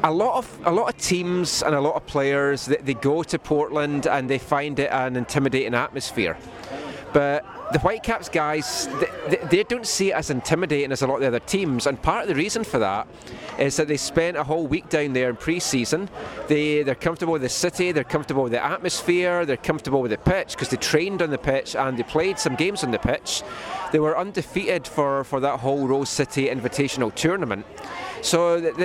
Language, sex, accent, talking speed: English, male, British, 220 wpm